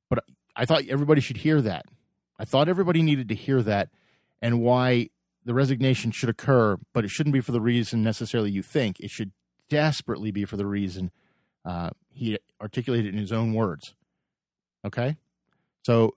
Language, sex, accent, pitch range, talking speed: English, male, American, 105-130 Hz, 165 wpm